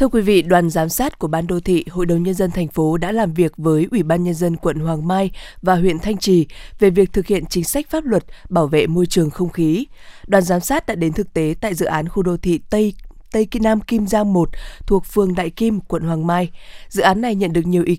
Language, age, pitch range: Vietnamese, 20-39, 165-205 Hz